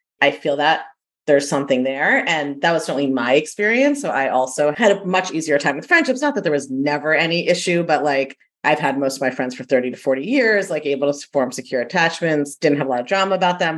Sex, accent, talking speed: female, American, 245 wpm